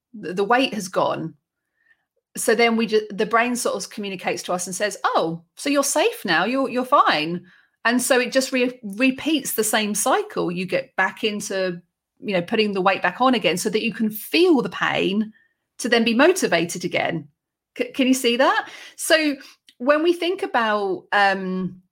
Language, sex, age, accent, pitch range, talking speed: English, female, 30-49, British, 180-260 Hz, 190 wpm